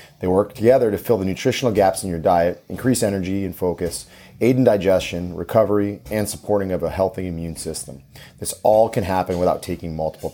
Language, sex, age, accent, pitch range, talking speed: English, male, 30-49, American, 90-110 Hz, 190 wpm